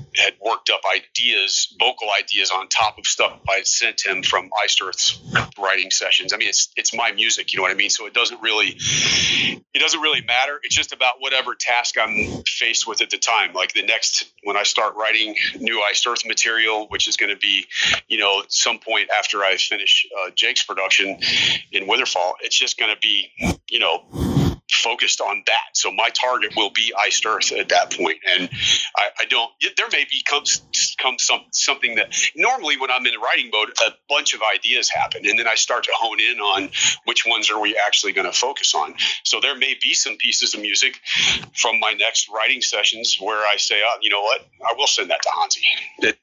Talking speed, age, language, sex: 215 wpm, 40-59, English, male